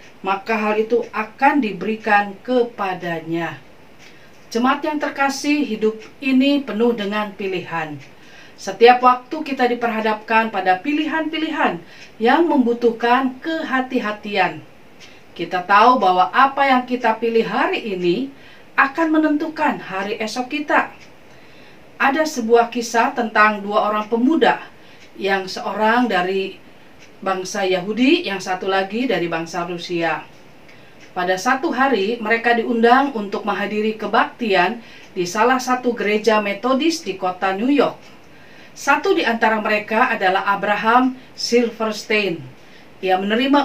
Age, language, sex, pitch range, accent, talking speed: 40-59, Indonesian, female, 195-260 Hz, native, 110 wpm